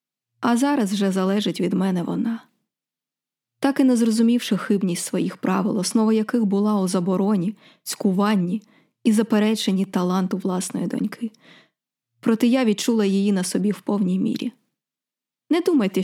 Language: Ukrainian